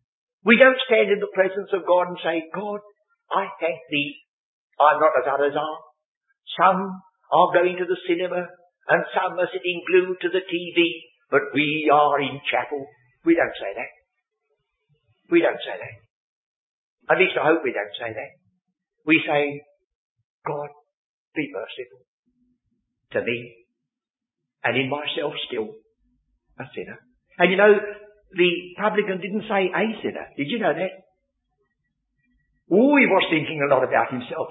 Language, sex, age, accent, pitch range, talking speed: English, male, 50-69, British, 145-230 Hz, 155 wpm